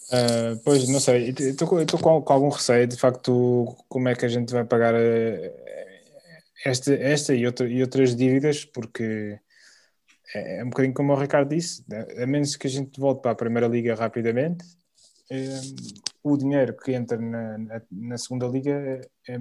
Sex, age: male, 20-39